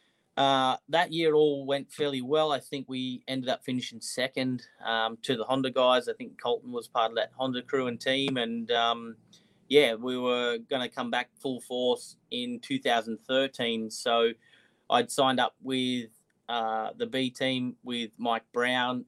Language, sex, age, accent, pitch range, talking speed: English, male, 30-49, Australian, 120-135 Hz, 175 wpm